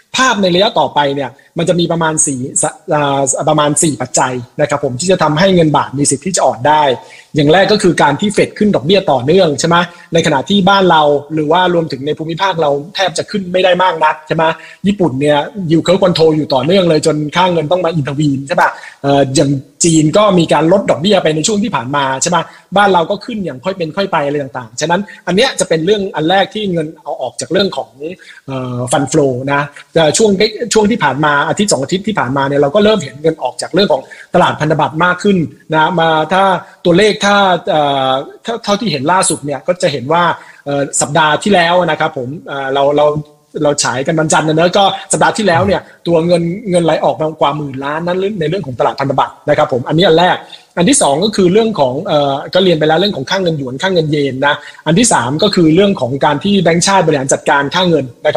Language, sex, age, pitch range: Thai, male, 20-39, 145-185 Hz